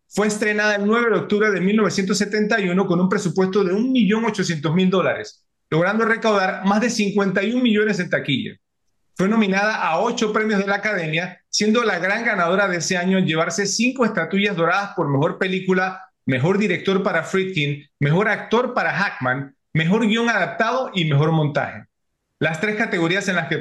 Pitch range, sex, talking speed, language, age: 165-205 Hz, male, 165 wpm, Spanish, 40-59